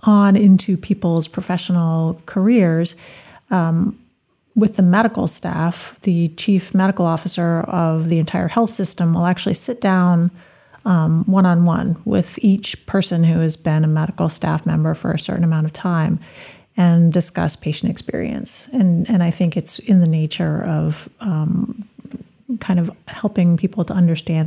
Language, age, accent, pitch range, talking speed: English, 30-49, American, 170-205 Hz, 150 wpm